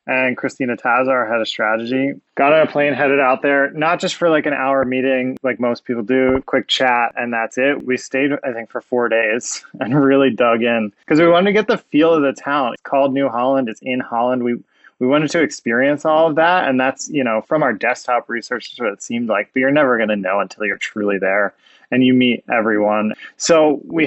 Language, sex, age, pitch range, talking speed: English, male, 20-39, 115-145 Hz, 235 wpm